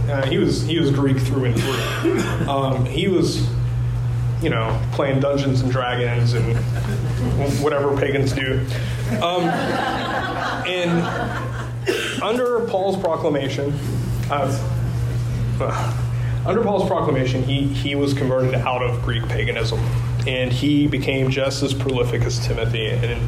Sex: male